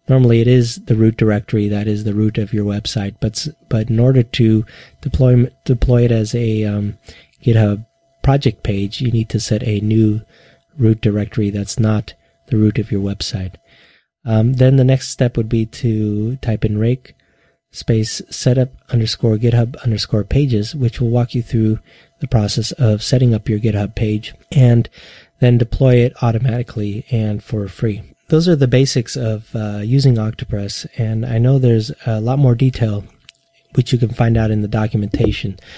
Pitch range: 105-130 Hz